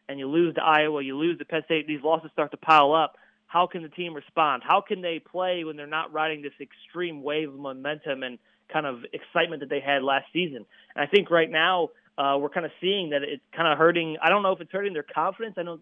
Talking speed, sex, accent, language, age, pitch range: 260 wpm, male, American, English, 30-49, 150-175 Hz